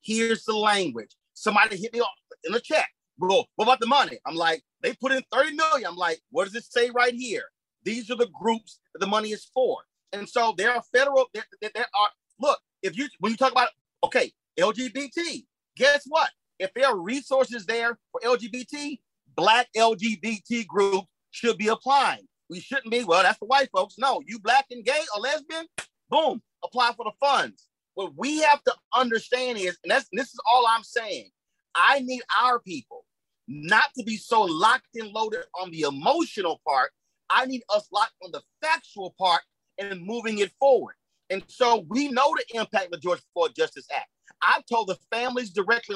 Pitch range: 210-270 Hz